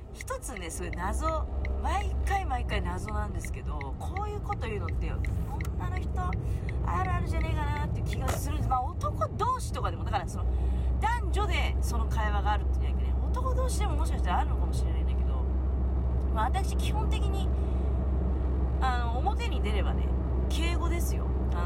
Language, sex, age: Japanese, female, 40-59